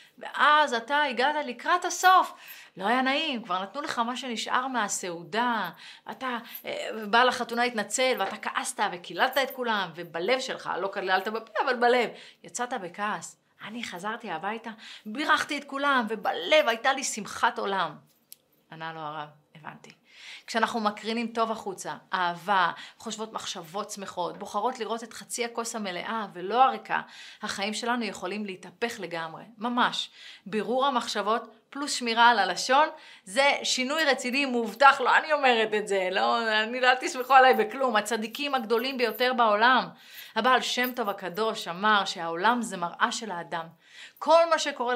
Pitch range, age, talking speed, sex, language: 200-255 Hz, 30-49, 145 wpm, female, Hebrew